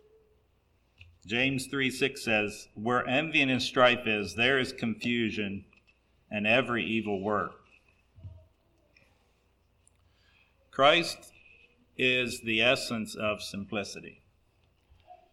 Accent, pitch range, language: American, 100-130 Hz, English